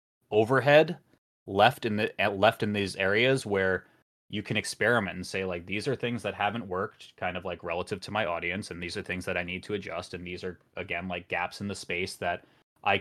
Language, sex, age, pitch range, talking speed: English, male, 20-39, 90-105 Hz, 220 wpm